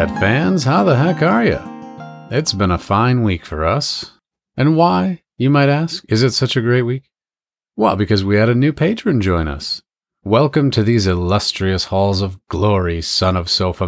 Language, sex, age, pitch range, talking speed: English, male, 40-59, 95-135 Hz, 185 wpm